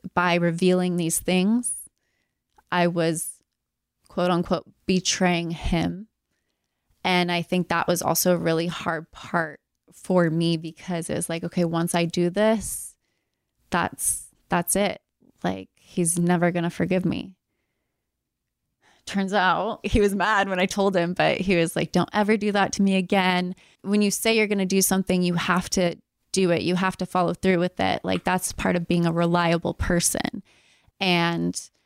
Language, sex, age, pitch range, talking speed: English, female, 20-39, 175-195 Hz, 170 wpm